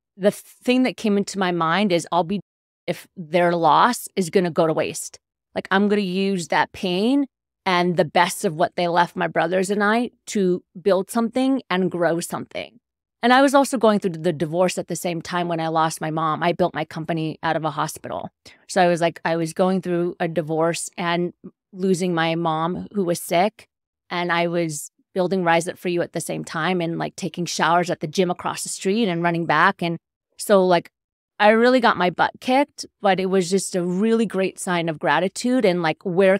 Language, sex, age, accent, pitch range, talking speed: English, female, 30-49, American, 175-210 Hz, 220 wpm